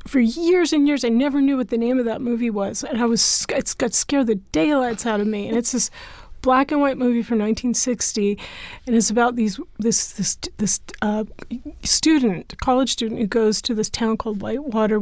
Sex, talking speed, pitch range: female, 205 wpm, 225-260 Hz